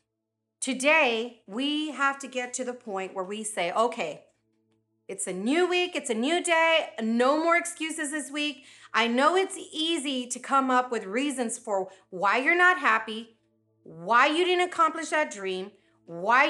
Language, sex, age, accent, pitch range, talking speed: English, female, 30-49, American, 195-300 Hz, 165 wpm